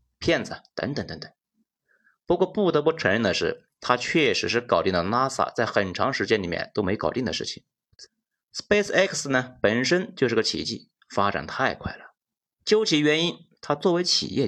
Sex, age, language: male, 30-49, Chinese